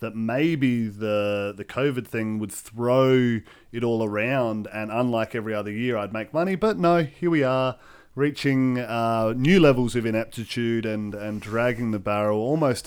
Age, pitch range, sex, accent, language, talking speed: 30-49, 105-130 Hz, male, Australian, English, 170 wpm